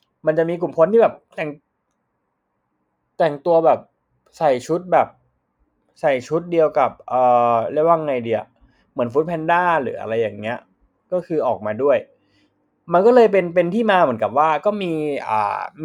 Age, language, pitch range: 20-39, Thai, 135-185 Hz